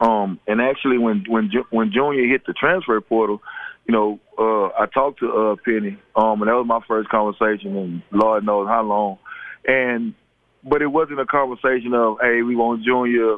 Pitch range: 110-125 Hz